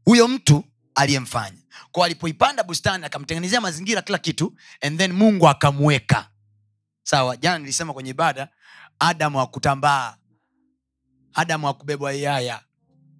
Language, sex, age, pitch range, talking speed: Swahili, male, 30-49, 125-185 Hz, 105 wpm